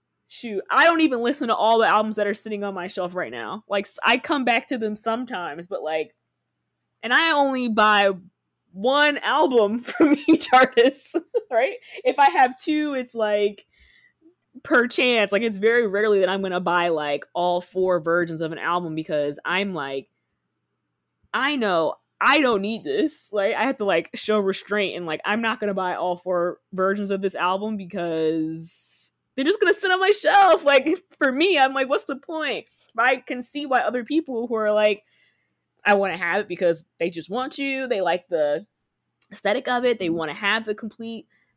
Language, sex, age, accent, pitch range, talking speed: English, female, 20-39, American, 195-270 Hz, 195 wpm